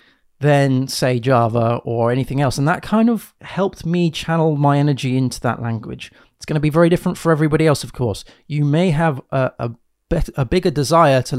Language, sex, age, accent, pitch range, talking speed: English, male, 30-49, British, 125-165 Hz, 205 wpm